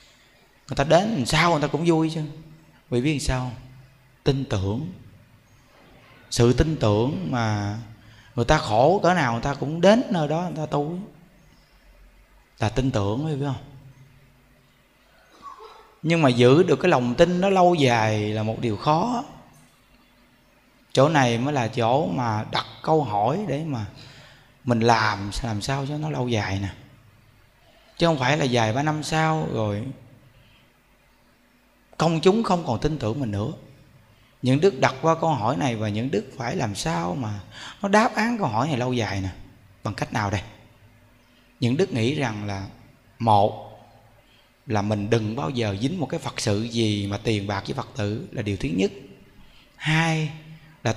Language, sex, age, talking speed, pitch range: Vietnamese, male, 20-39, 175 wpm, 115-155 Hz